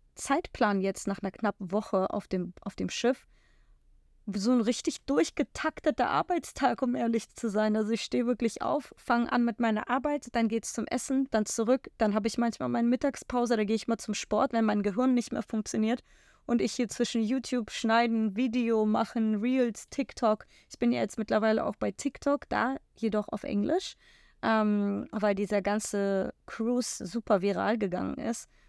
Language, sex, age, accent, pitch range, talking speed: German, female, 20-39, German, 205-245 Hz, 180 wpm